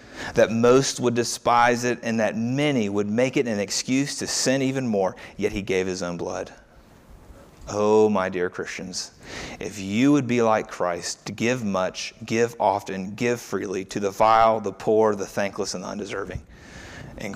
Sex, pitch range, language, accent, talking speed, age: male, 100-120 Hz, English, American, 175 wpm, 30-49